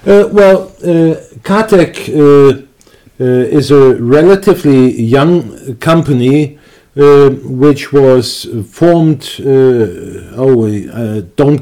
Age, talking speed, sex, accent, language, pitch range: 50-69, 100 wpm, male, German, English, 130-160 Hz